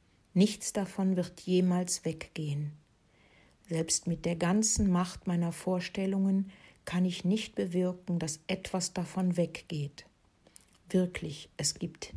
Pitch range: 165-195 Hz